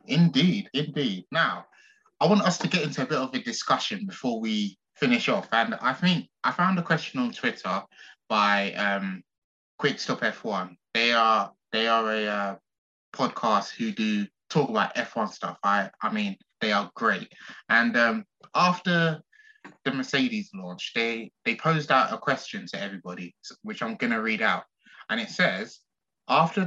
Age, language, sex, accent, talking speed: 20-39, English, male, British, 175 wpm